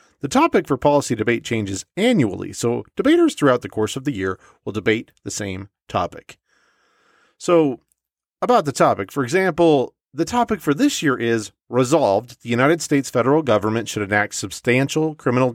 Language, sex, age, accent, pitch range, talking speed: English, male, 40-59, American, 110-150 Hz, 160 wpm